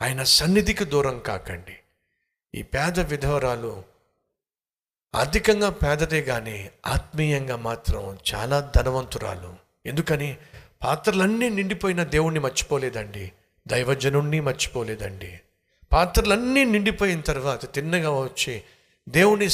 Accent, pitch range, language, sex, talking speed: native, 115-170 Hz, Telugu, male, 80 wpm